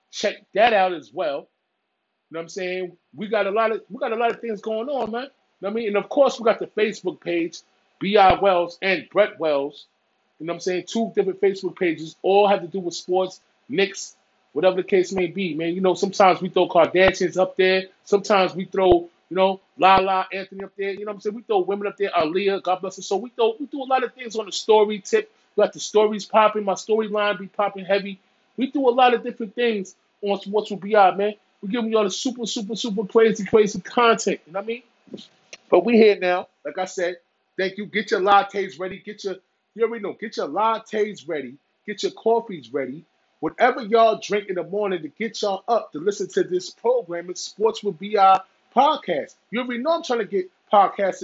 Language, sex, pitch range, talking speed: English, male, 190-230 Hz, 235 wpm